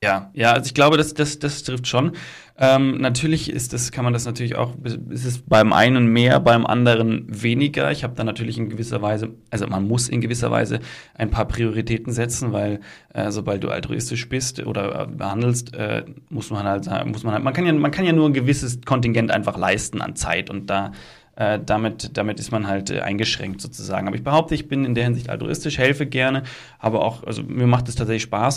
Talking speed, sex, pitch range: 215 wpm, male, 110-135 Hz